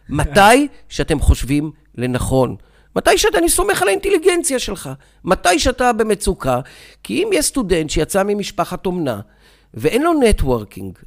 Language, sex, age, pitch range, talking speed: Hebrew, male, 50-69, 145-195 Hz, 130 wpm